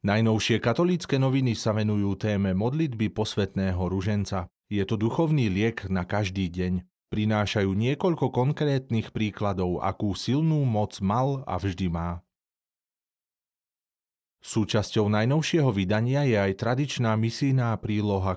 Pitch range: 95-125 Hz